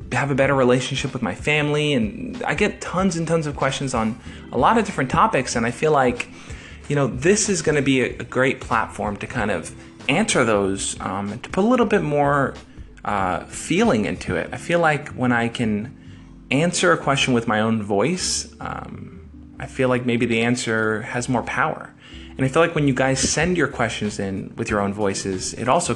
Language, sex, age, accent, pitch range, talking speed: English, male, 20-39, American, 105-140 Hz, 215 wpm